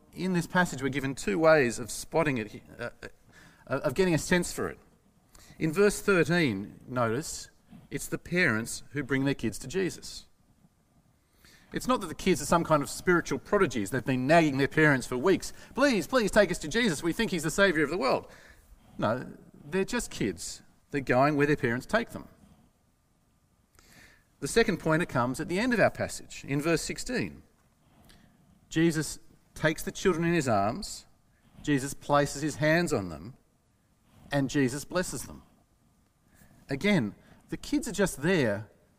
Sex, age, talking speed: male, 40-59, 170 wpm